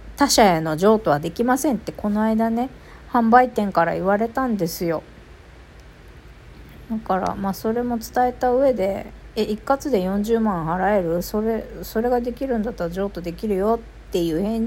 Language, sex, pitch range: Japanese, female, 180-245 Hz